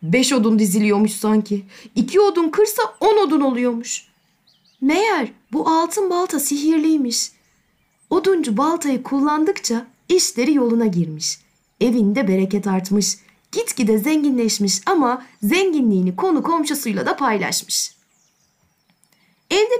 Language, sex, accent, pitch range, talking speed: Turkish, female, native, 190-285 Hz, 100 wpm